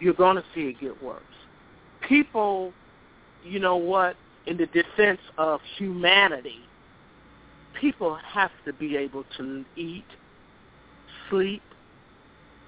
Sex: male